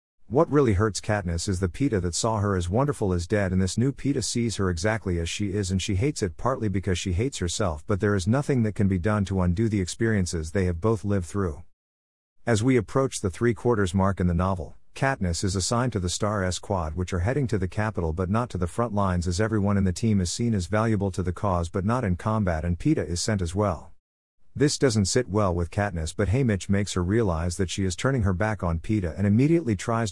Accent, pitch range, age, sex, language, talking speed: American, 90-110 Hz, 50-69, male, English, 245 wpm